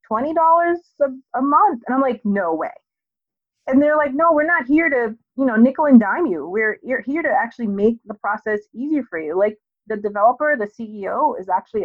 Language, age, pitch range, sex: English, 30-49, 185-270 Hz, female